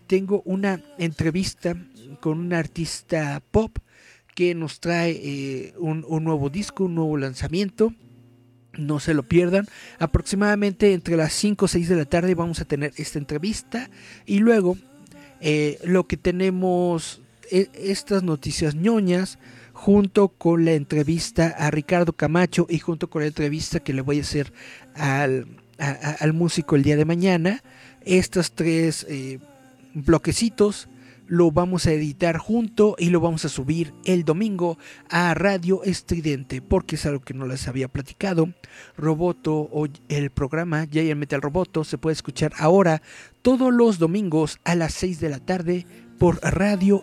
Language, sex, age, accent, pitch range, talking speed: Spanish, male, 50-69, Mexican, 150-185 Hz, 155 wpm